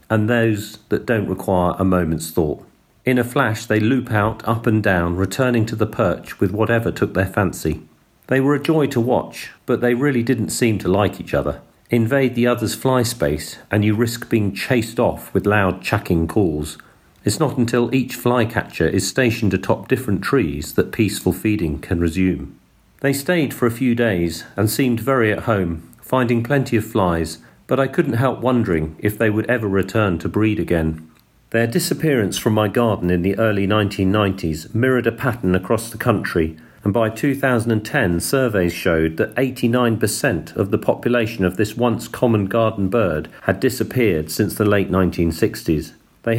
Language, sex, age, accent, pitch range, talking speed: English, male, 40-59, British, 95-120 Hz, 175 wpm